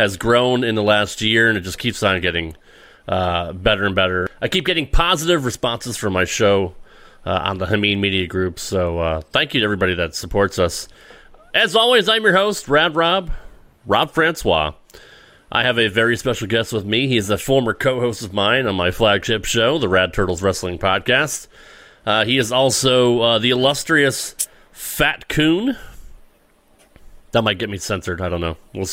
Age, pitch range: 30-49, 95-125 Hz